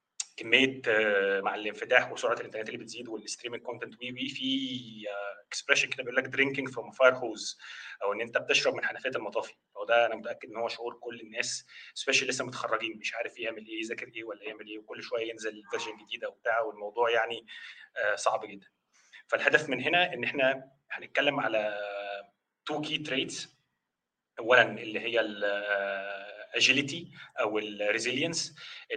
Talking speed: 160 wpm